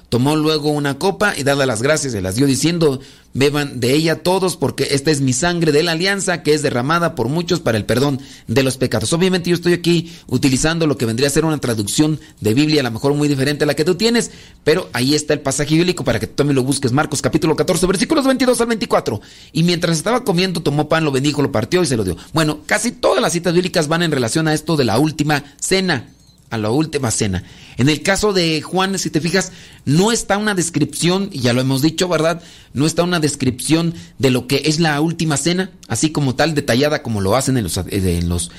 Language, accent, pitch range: Spanish, Mexican, 135-170 Hz